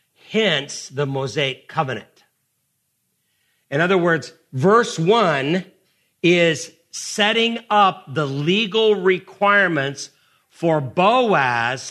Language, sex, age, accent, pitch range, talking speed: English, male, 50-69, American, 135-190 Hz, 85 wpm